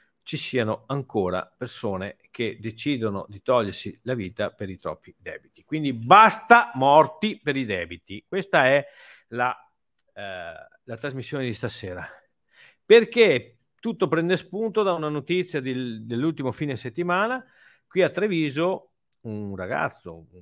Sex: male